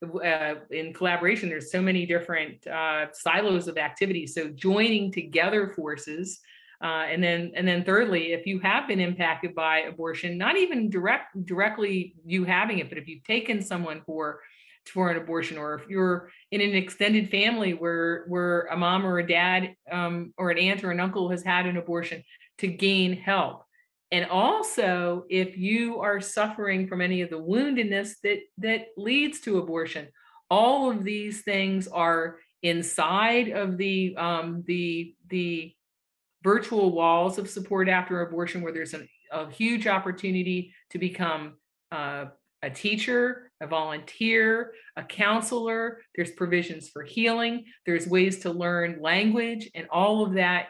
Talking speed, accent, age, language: 155 wpm, American, 50-69, English